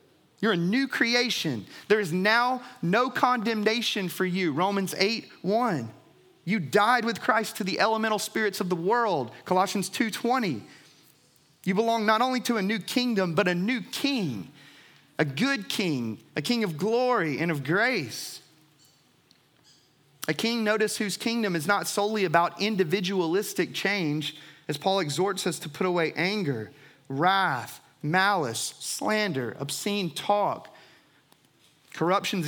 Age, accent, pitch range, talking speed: 30-49, American, 150-205 Hz, 140 wpm